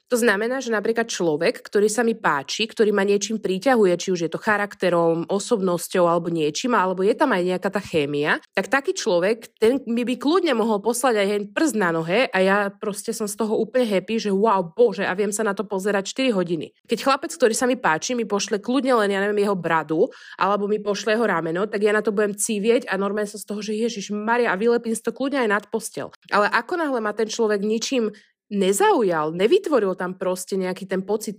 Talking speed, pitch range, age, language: 220 wpm, 190-235 Hz, 20-39, Slovak